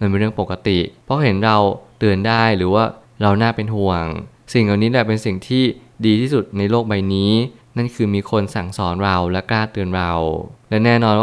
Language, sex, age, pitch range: Thai, male, 20-39, 100-120 Hz